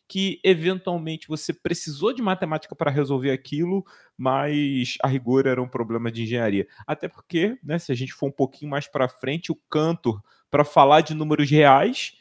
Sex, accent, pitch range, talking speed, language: male, Brazilian, 115-150 Hz, 175 wpm, Portuguese